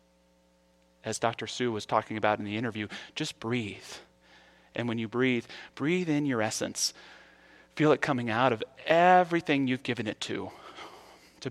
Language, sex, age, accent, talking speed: English, male, 30-49, American, 155 wpm